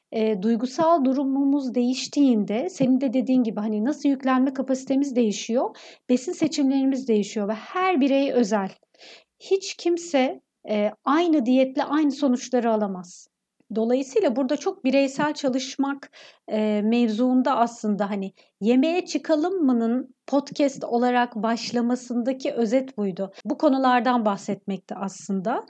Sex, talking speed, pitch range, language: female, 110 wpm, 225-285 Hz, Turkish